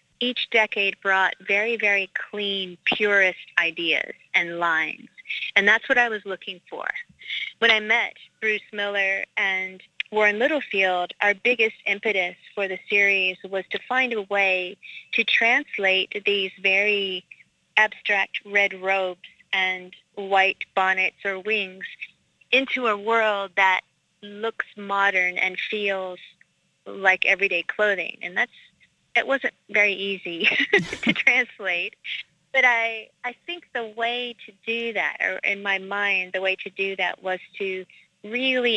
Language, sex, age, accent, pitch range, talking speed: English, female, 40-59, American, 185-220 Hz, 135 wpm